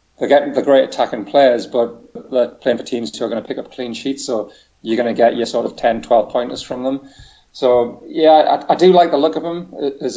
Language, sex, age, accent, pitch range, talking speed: English, male, 30-49, British, 120-140 Hz, 255 wpm